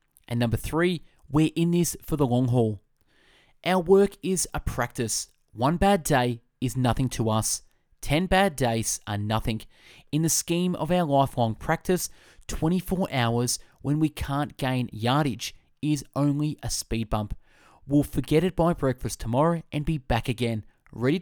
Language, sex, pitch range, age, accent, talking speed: English, male, 120-165 Hz, 20-39, Australian, 160 wpm